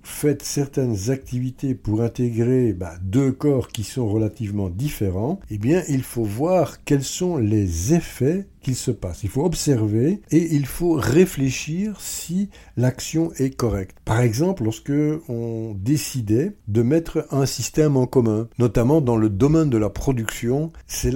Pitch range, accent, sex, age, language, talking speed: 105-140 Hz, French, male, 60-79, French, 155 wpm